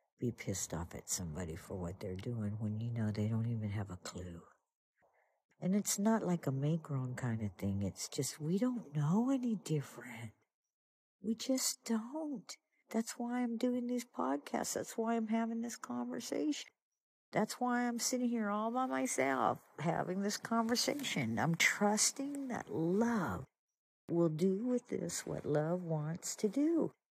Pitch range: 120-195 Hz